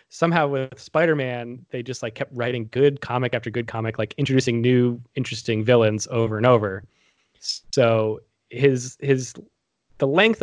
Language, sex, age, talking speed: English, male, 20-39, 150 wpm